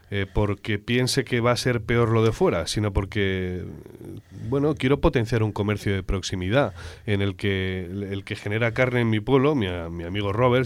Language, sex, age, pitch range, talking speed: Spanish, male, 30-49, 100-125 Hz, 190 wpm